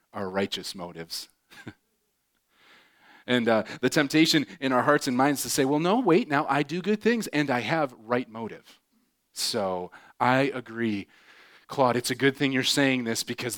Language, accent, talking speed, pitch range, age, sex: English, American, 170 wpm, 125-175 Hz, 30-49, male